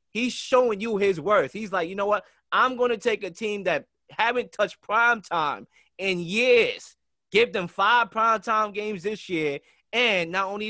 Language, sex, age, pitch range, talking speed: English, male, 20-39, 155-210 Hz, 180 wpm